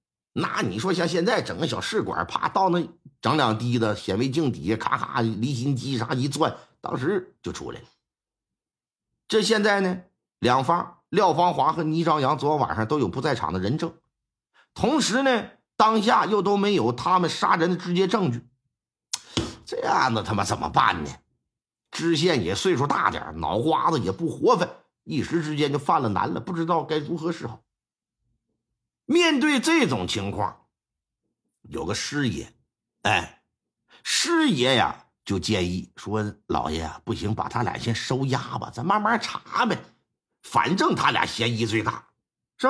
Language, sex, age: Chinese, male, 50-69